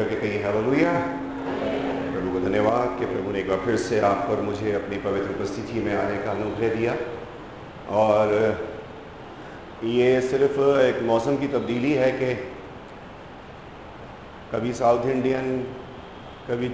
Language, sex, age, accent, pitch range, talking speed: Hindi, male, 50-69, native, 110-130 Hz, 85 wpm